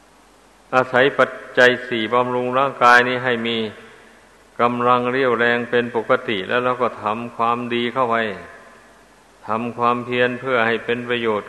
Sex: male